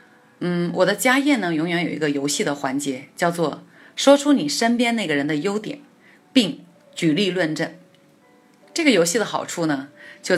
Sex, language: female, Chinese